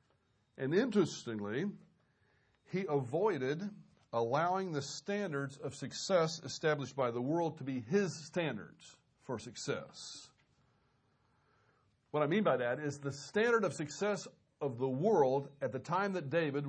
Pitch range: 135-200 Hz